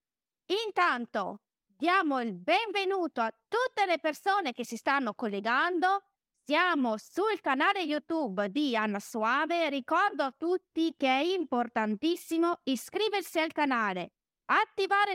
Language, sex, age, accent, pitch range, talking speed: Italian, female, 30-49, native, 235-340 Hz, 115 wpm